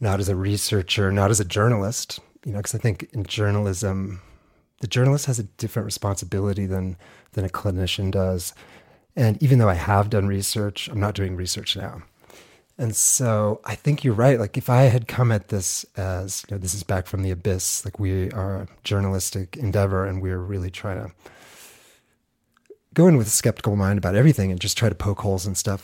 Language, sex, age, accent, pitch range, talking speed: English, male, 30-49, American, 95-110 Hz, 200 wpm